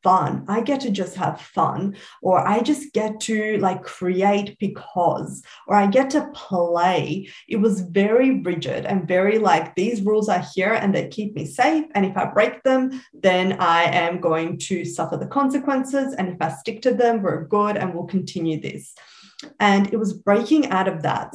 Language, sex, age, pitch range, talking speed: English, female, 20-39, 180-230 Hz, 190 wpm